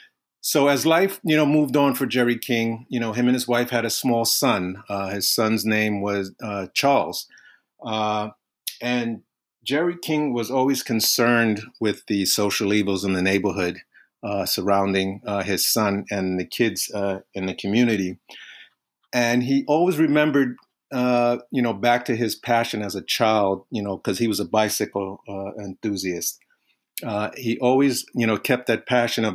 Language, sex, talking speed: English, male, 175 wpm